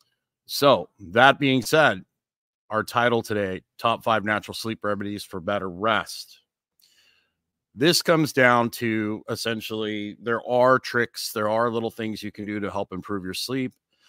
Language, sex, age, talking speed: English, male, 40-59, 150 wpm